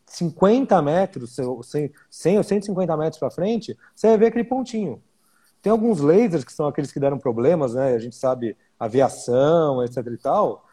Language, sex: Portuguese, male